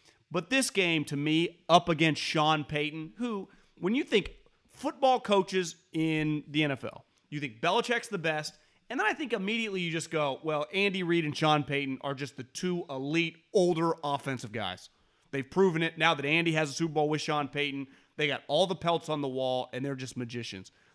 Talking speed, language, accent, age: 200 wpm, English, American, 30-49